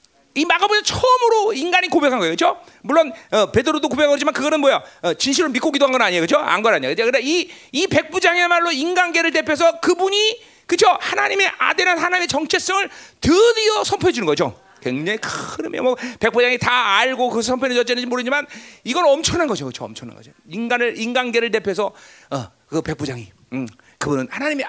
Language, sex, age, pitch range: Korean, male, 40-59, 235-375 Hz